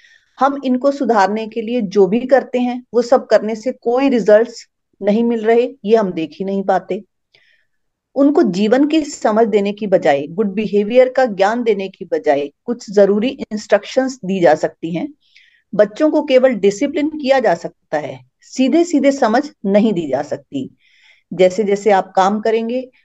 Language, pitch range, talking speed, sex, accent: Hindi, 195-250 Hz, 170 wpm, female, native